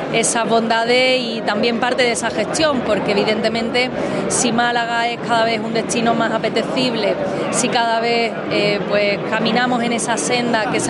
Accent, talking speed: Spanish, 165 wpm